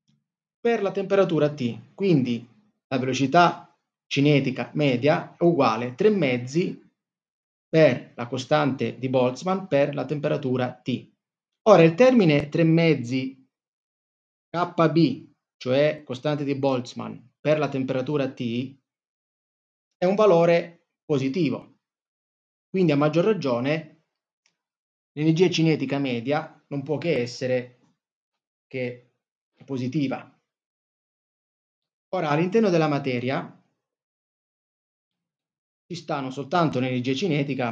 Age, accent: 30-49, native